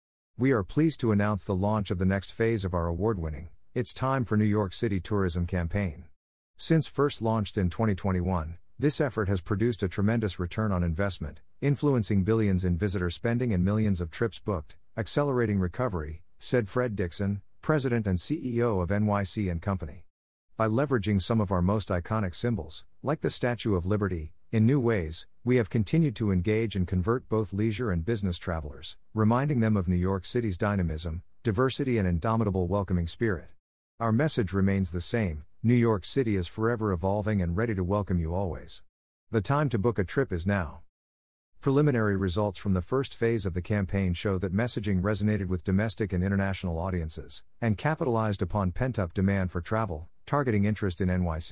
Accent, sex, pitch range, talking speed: American, male, 90-115 Hz, 175 wpm